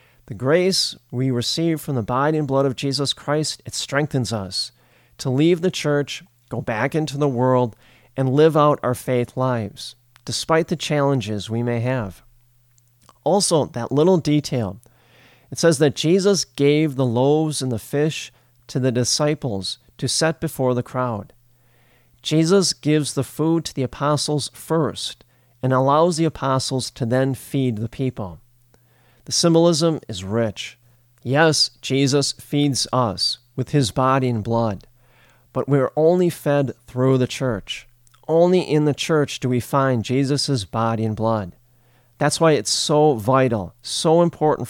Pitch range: 120-150 Hz